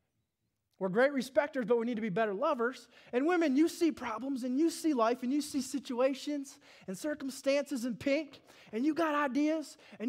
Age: 20-39